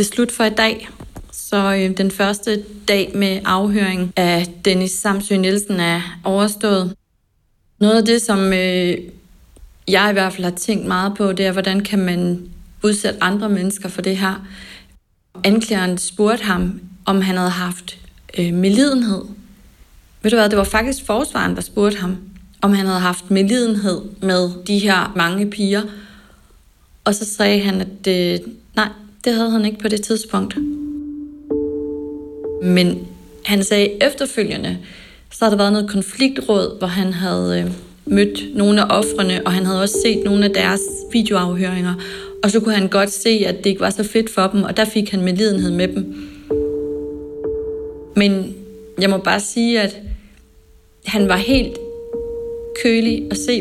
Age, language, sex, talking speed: 30-49, Danish, female, 160 wpm